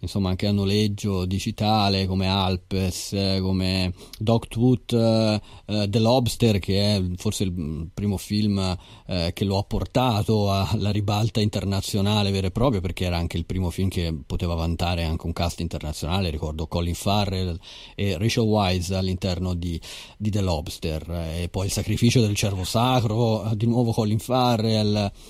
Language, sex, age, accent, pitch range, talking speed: Italian, male, 30-49, native, 95-115 Hz, 150 wpm